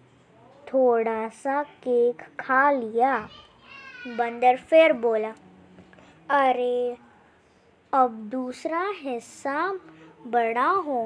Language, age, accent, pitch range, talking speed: Telugu, 20-39, native, 230-290 Hz, 75 wpm